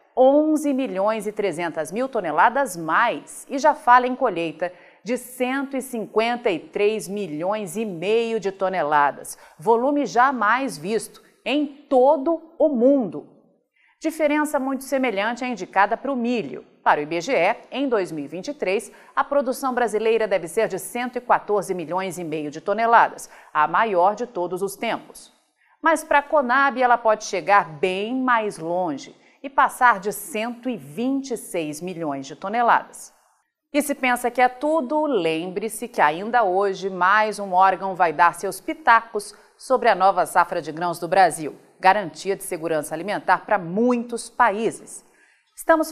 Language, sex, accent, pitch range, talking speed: Portuguese, female, Brazilian, 185-255 Hz, 140 wpm